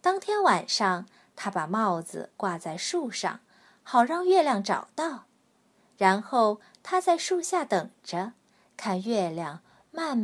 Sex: female